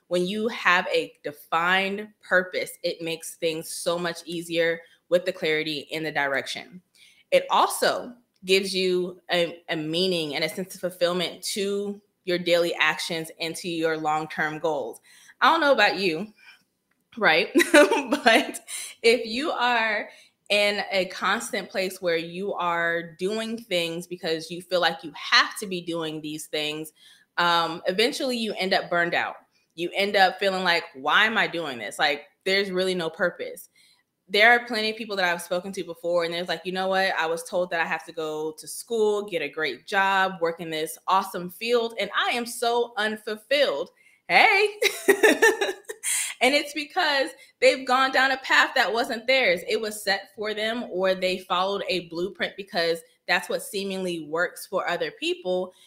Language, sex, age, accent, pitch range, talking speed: English, female, 20-39, American, 170-230 Hz, 175 wpm